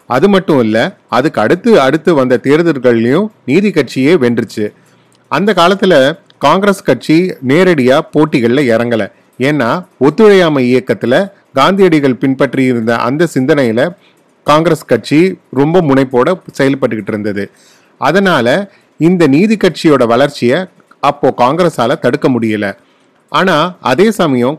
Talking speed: 100 wpm